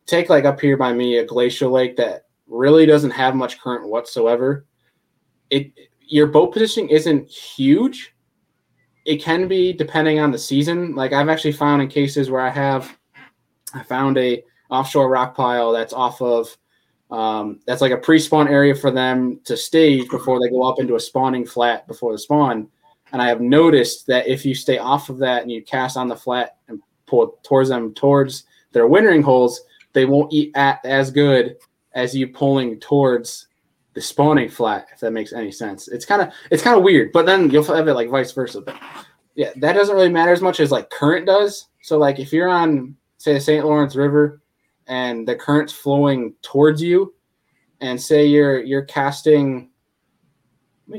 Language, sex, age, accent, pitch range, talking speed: English, male, 20-39, American, 125-150 Hz, 190 wpm